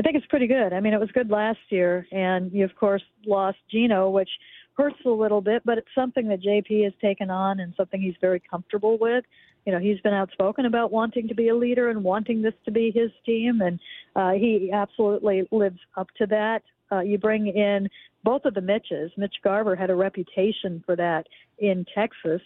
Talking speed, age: 215 wpm, 50-69